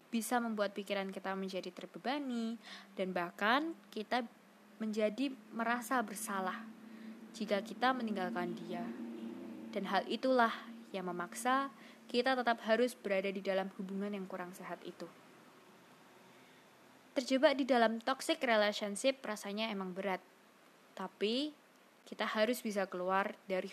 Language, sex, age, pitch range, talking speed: Indonesian, female, 20-39, 195-250 Hz, 115 wpm